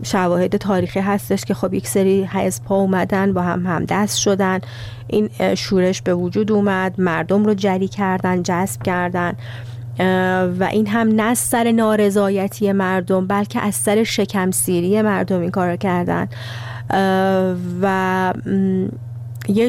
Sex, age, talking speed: female, 30-49, 130 wpm